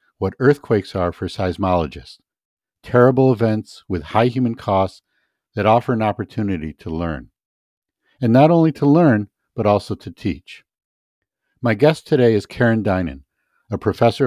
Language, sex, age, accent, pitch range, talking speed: English, male, 50-69, American, 95-125 Hz, 145 wpm